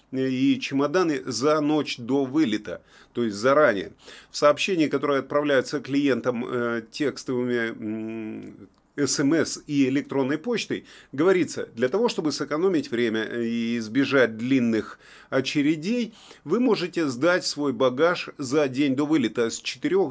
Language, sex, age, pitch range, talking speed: Russian, male, 30-49, 120-155 Hz, 125 wpm